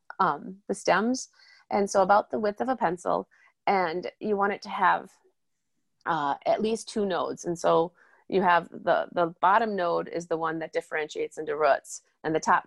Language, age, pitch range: English, 30-49, 170-220 Hz